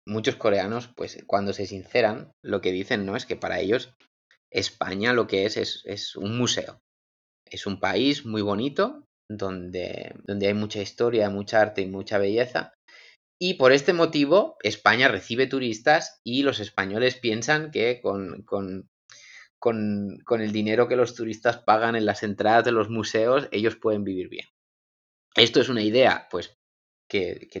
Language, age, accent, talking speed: Spanish, 20-39, Spanish, 165 wpm